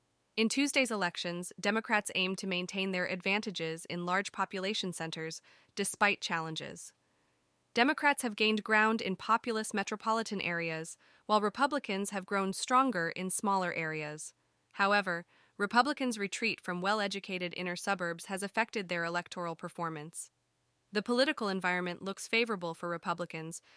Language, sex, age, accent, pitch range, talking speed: English, female, 20-39, American, 175-215 Hz, 125 wpm